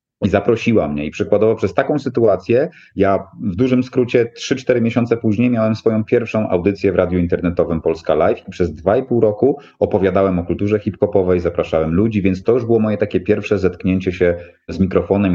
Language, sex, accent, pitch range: Polish, male, native, 90-110 Hz